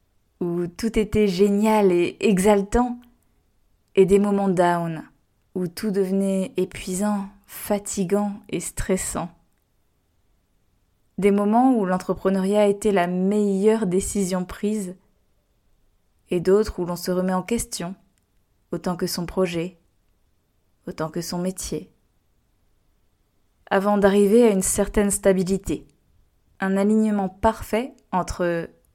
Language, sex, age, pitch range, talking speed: French, female, 20-39, 170-205 Hz, 110 wpm